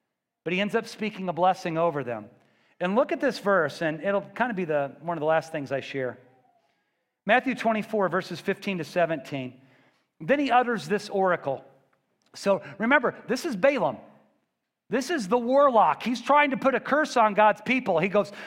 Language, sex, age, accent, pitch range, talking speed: English, male, 40-59, American, 145-215 Hz, 190 wpm